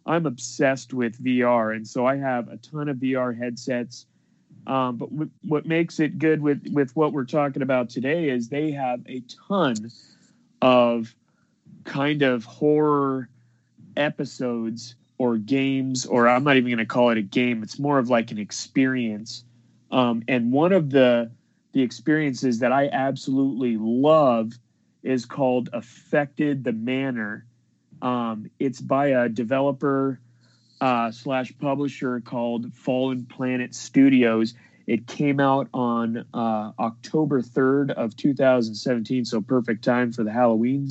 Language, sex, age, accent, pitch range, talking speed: English, male, 30-49, American, 120-140 Hz, 145 wpm